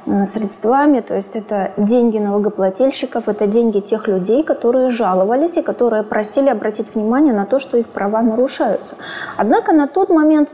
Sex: female